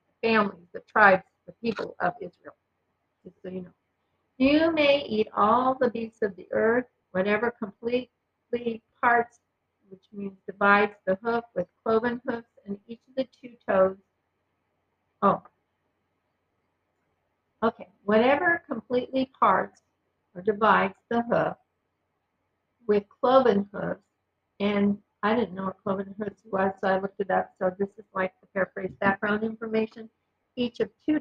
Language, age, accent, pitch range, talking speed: English, 50-69, American, 190-230 Hz, 140 wpm